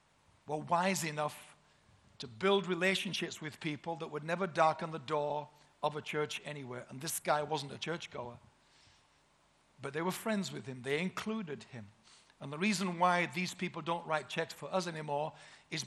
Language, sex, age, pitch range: Japanese, male, 60-79, 145-180 Hz